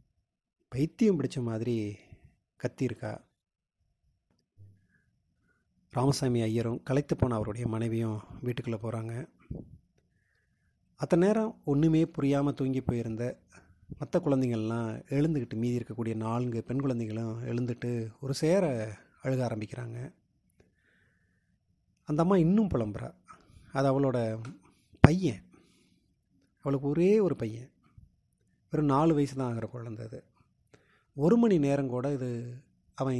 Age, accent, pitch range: 30-49, native, 115-140 Hz